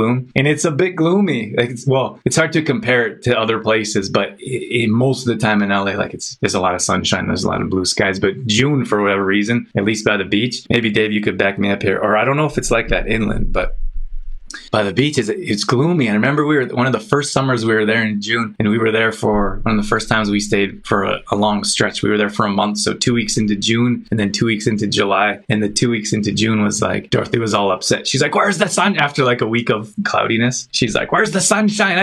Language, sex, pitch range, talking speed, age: English, male, 105-130 Hz, 275 wpm, 20-39